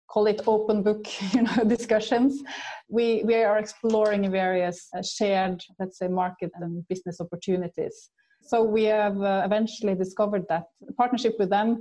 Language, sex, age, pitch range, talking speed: English, female, 30-49, 190-225 Hz, 145 wpm